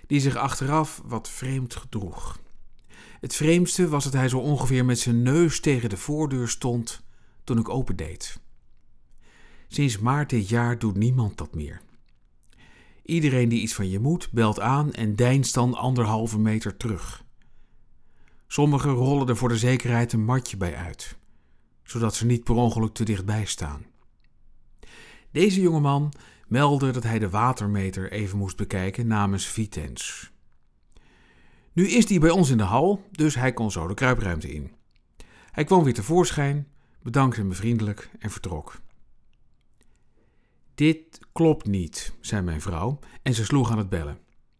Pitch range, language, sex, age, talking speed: 105-140 Hz, Dutch, male, 50-69, 150 wpm